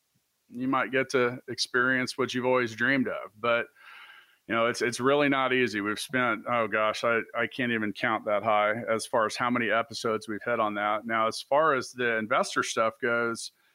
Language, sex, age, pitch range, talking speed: English, male, 40-59, 115-150 Hz, 205 wpm